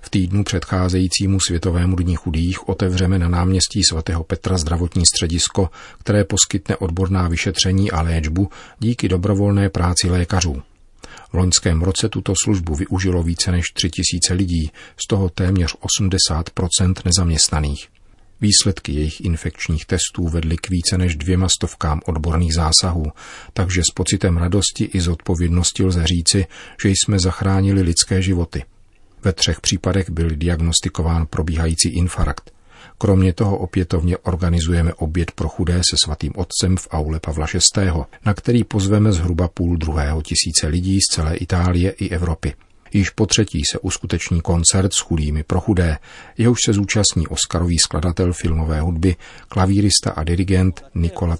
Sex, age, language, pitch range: male, 40-59, Czech, 85-95 Hz